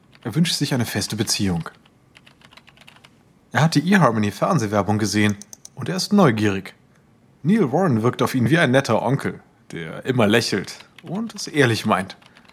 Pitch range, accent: 110-165 Hz, German